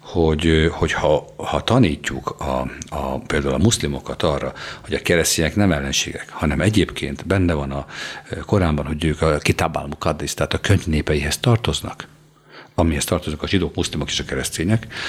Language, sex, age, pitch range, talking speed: Hungarian, male, 60-79, 75-90 Hz, 160 wpm